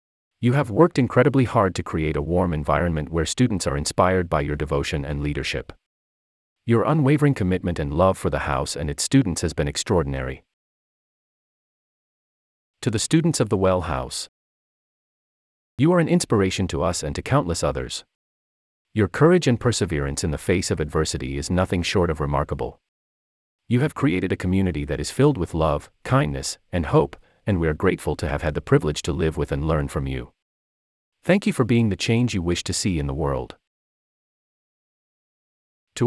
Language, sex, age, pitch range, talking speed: English, male, 30-49, 70-105 Hz, 180 wpm